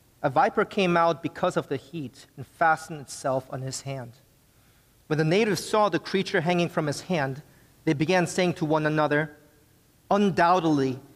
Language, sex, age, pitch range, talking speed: English, male, 40-59, 130-165 Hz, 165 wpm